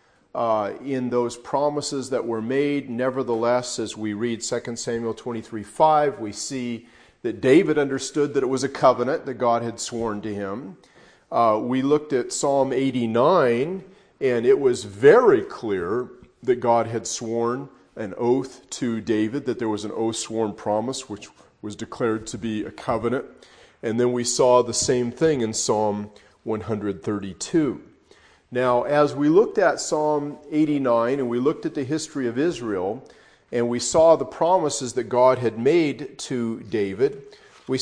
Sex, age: male, 40-59